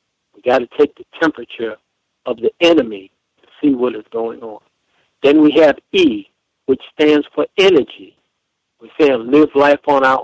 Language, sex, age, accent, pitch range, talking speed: English, male, 60-79, American, 130-180 Hz, 165 wpm